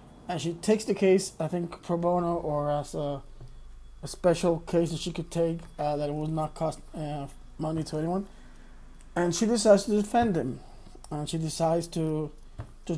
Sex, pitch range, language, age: male, 150-175 Hz, English, 20-39